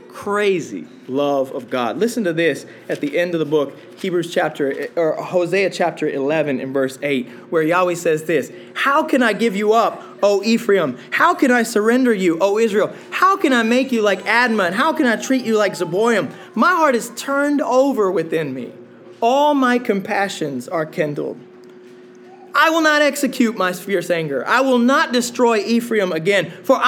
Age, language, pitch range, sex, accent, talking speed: 20-39, English, 160-235 Hz, male, American, 180 wpm